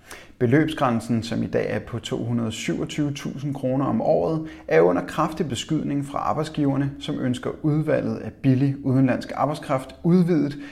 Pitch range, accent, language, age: 110-140 Hz, native, Danish, 30-49